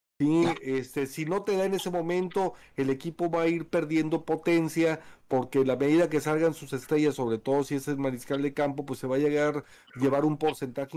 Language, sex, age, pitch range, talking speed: Spanish, male, 40-59, 130-155 Hz, 215 wpm